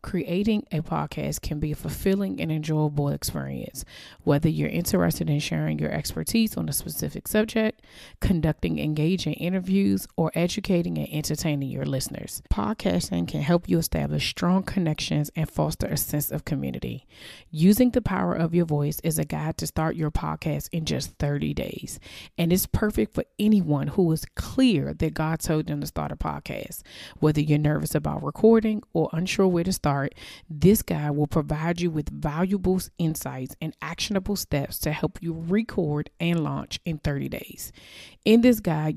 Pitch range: 145-180 Hz